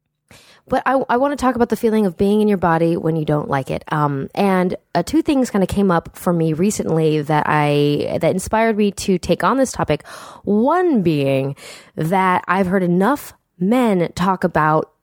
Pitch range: 165-230 Hz